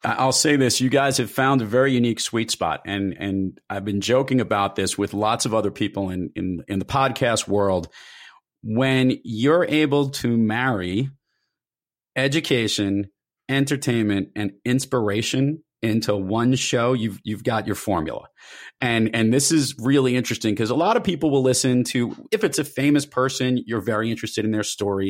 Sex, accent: male, American